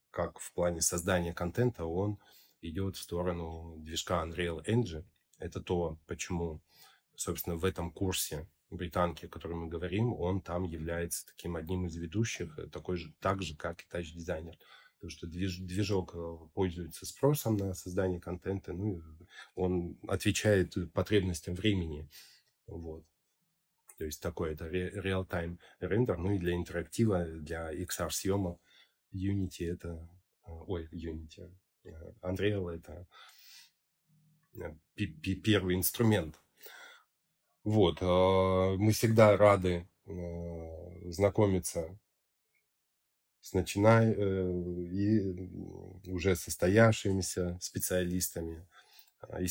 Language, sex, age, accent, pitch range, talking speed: Russian, male, 20-39, native, 85-95 Hz, 100 wpm